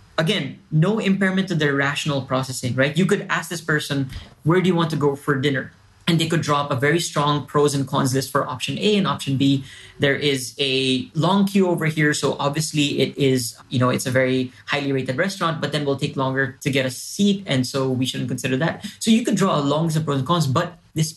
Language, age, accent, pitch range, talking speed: English, 20-39, Filipino, 130-165 Hz, 240 wpm